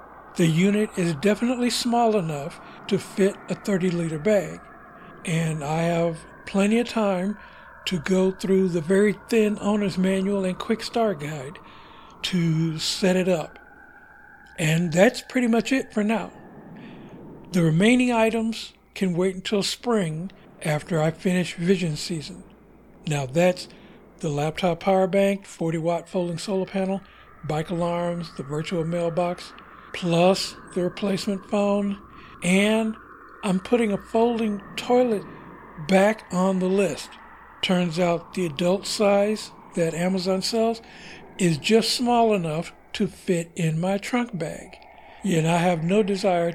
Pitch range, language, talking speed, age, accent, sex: 175-210 Hz, English, 135 wpm, 60-79, American, male